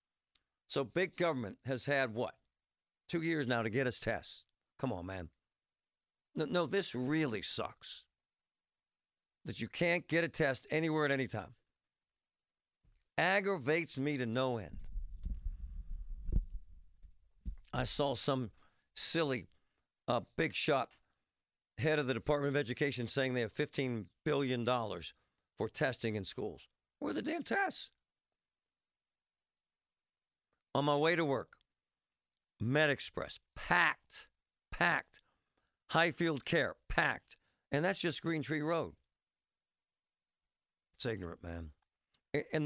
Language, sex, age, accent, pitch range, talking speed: English, male, 50-69, American, 95-155 Hz, 120 wpm